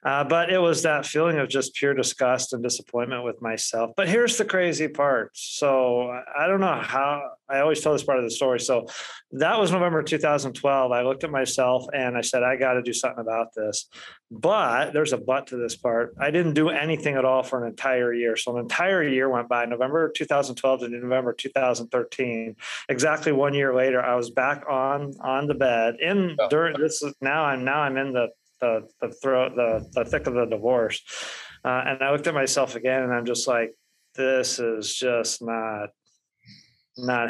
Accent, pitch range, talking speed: American, 120-140 Hz, 200 wpm